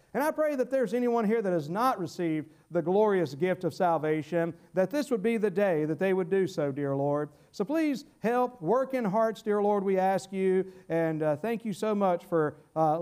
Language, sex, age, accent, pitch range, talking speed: English, male, 50-69, American, 180-270 Hz, 220 wpm